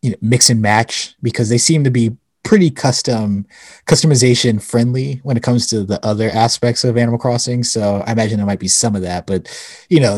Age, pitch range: 20-39, 100-125 Hz